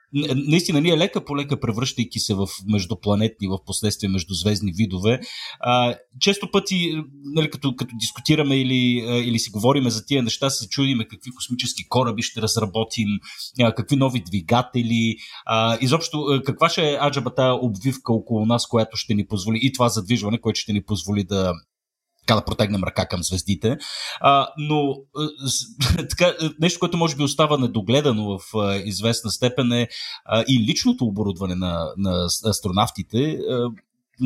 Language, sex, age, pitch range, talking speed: Bulgarian, male, 30-49, 110-140 Hz, 145 wpm